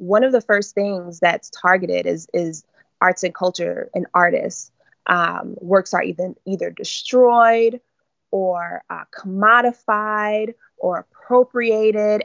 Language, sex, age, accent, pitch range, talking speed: English, female, 20-39, American, 180-225 Hz, 120 wpm